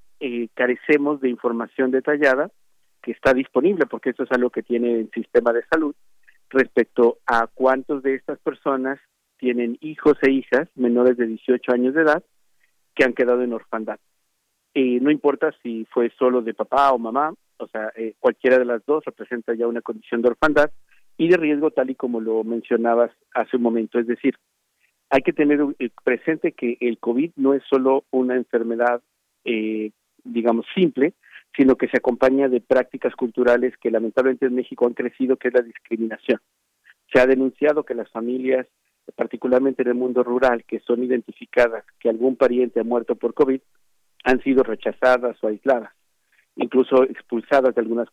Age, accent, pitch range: 50-69, Mexican, 120-135 Hz